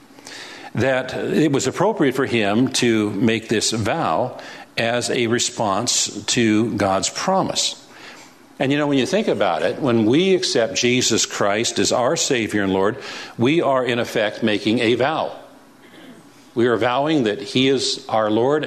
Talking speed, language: 160 wpm, English